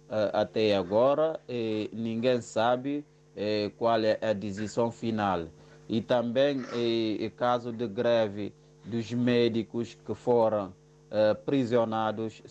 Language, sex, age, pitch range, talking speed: Portuguese, male, 30-49, 105-130 Hz, 100 wpm